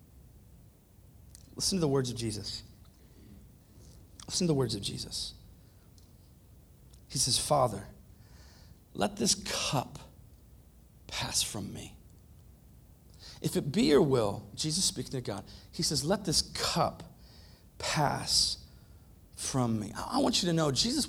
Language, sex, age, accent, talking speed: English, male, 40-59, American, 125 wpm